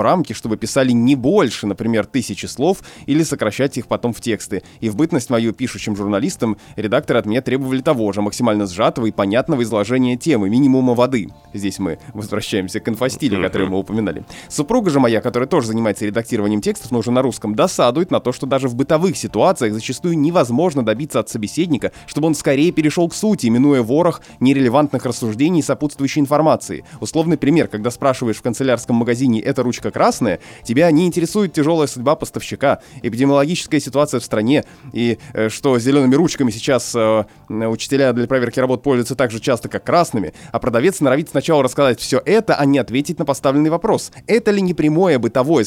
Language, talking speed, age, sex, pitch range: Russian, 175 wpm, 20-39, male, 110-150 Hz